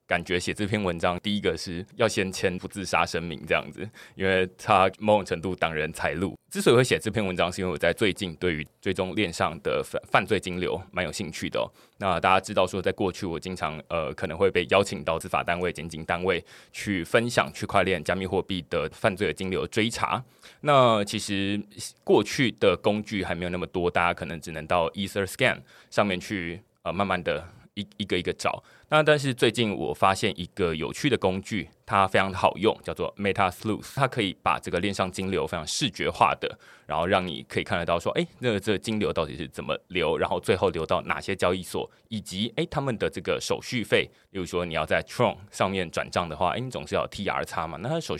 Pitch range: 90-105 Hz